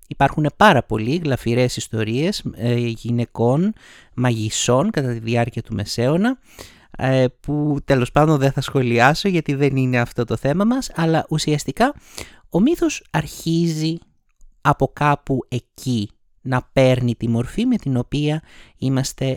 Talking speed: 135 wpm